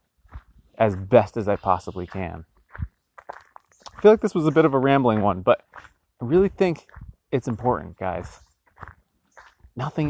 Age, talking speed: 30-49, 150 wpm